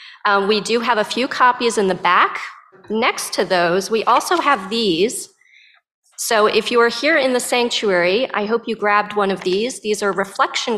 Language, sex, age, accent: English, female, 30-49, American